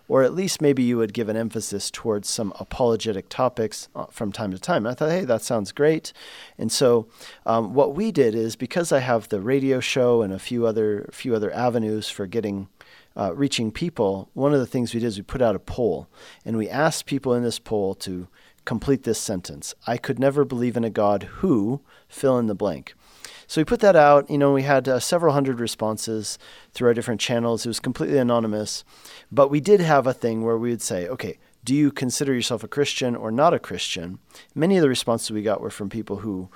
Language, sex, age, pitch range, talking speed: English, male, 40-59, 110-140 Hz, 220 wpm